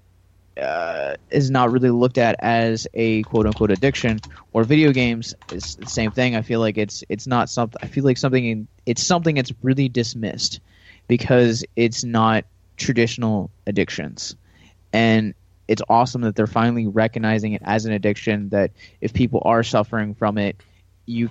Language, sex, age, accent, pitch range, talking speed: English, male, 20-39, American, 105-125 Hz, 165 wpm